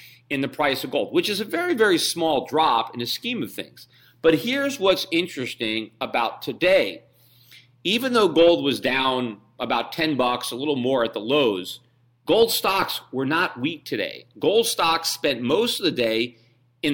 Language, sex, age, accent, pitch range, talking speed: English, male, 40-59, American, 125-170 Hz, 180 wpm